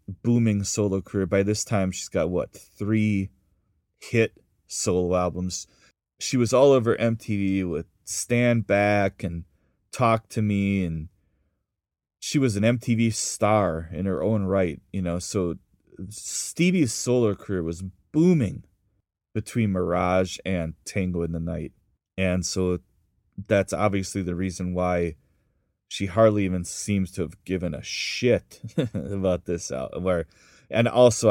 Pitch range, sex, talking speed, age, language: 90-110 Hz, male, 135 wpm, 30-49, English